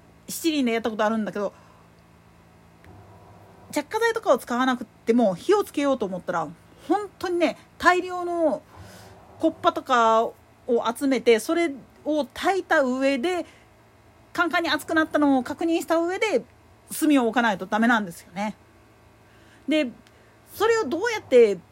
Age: 40-59